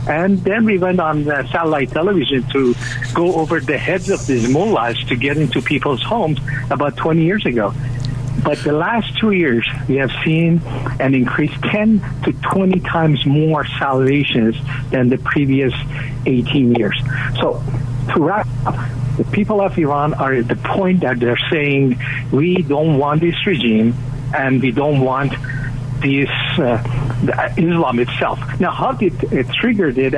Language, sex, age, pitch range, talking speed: English, male, 60-79, 125-165 Hz, 160 wpm